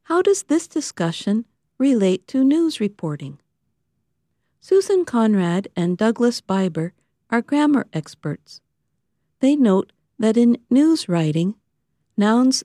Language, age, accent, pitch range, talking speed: English, 50-69, American, 180-245 Hz, 110 wpm